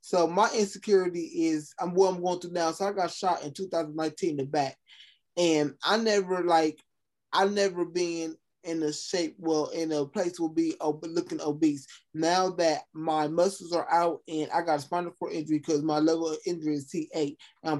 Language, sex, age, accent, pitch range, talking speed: English, male, 20-39, American, 155-180 Hz, 205 wpm